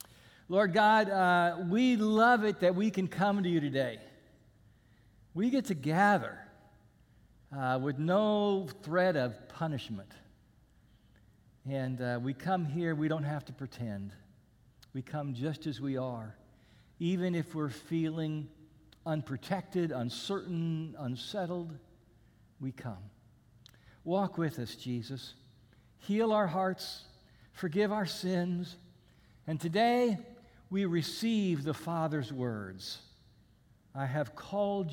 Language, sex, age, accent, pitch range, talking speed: English, male, 60-79, American, 120-185 Hz, 115 wpm